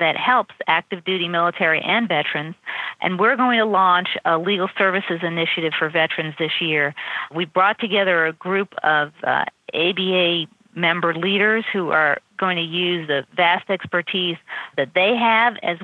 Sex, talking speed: female, 160 wpm